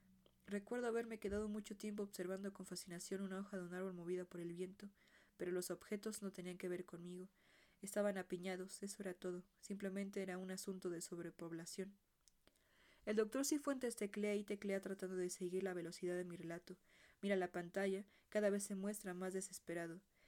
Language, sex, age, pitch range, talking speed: Spanish, female, 20-39, 180-200 Hz, 175 wpm